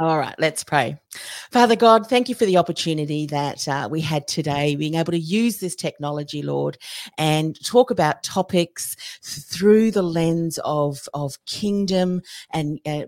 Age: 40-59